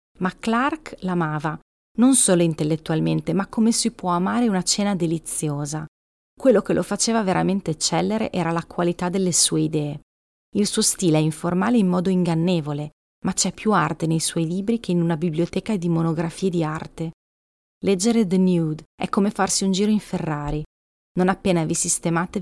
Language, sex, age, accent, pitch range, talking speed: Italian, female, 30-49, native, 155-195 Hz, 170 wpm